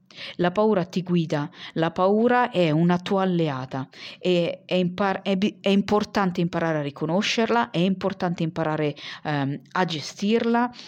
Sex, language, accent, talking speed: female, Italian, native, 120 wpm